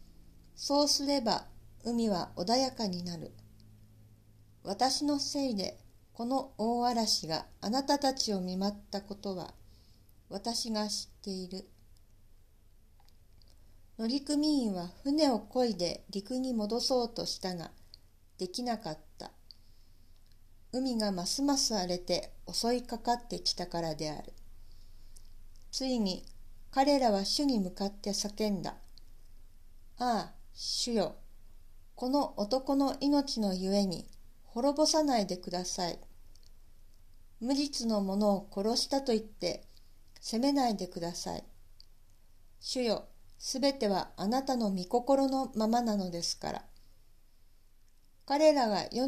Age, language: 50-69, Japanese